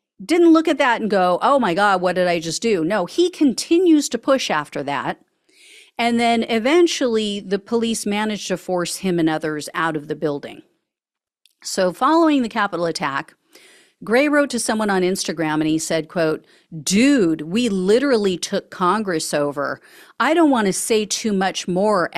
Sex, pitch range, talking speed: female, 175-250 Hz, 175 wpm